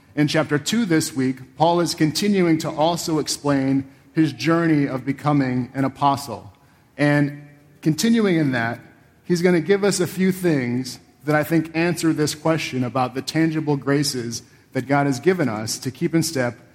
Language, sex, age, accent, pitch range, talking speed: English, male, 40-59, American, 130-160 Hz, 170 wpm